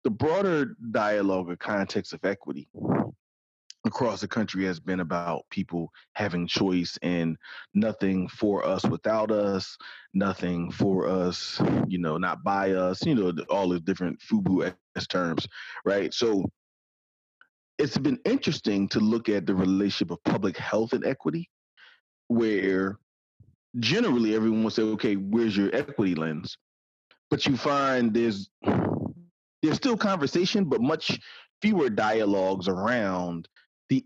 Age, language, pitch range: 30-49, English, 95-115 Hz